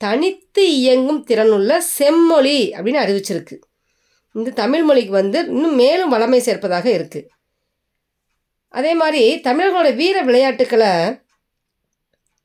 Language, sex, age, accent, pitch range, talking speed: Tamil, female, 20-39, native, 195-295 Hz, 90 wpm